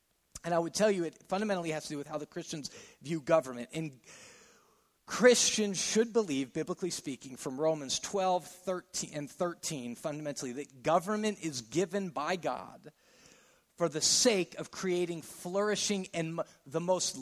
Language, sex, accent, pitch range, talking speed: English, male, American, 155-195 Hz, 155 wpm